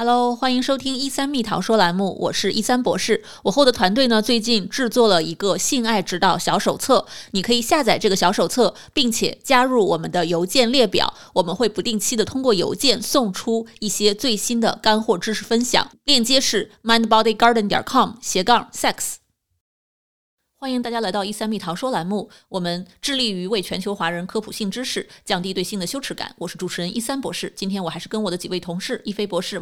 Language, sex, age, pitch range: Chinese, female, 20-39, 195-255 Hz